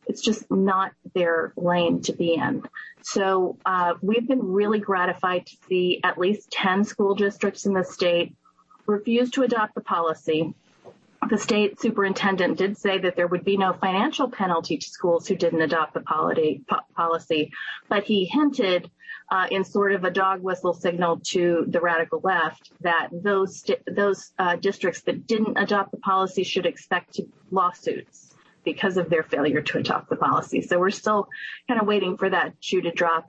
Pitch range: 165-200 Hz